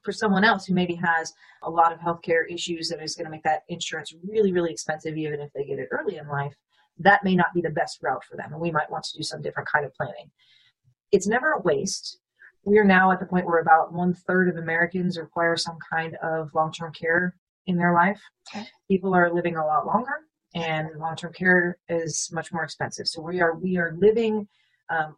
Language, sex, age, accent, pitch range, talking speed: English, female, 40-59, American, 160-180 Hz, 220 wpm